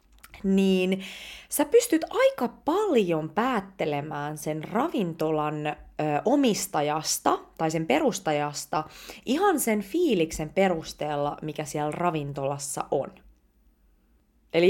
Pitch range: 155-210 Hz